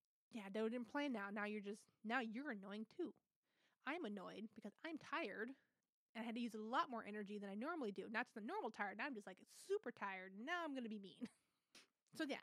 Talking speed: 235 wpm